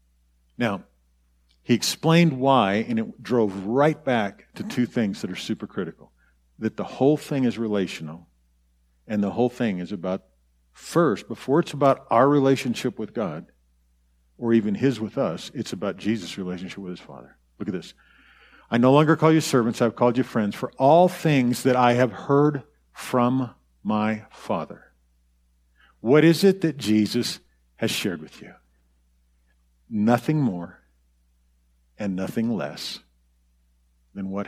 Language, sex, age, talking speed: English, male, 50-69, 150 wpm